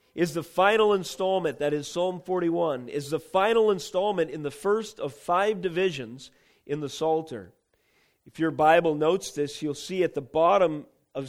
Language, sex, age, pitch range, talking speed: English, male, 40-59, 150-195 Hz, 170 wpm